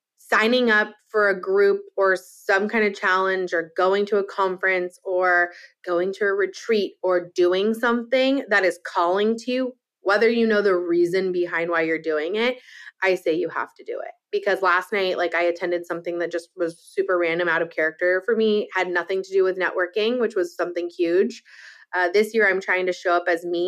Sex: female